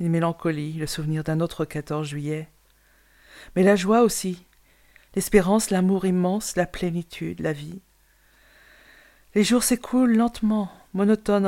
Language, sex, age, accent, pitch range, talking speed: French, female, 50-69, French, 175-220 Hz, 125 wpm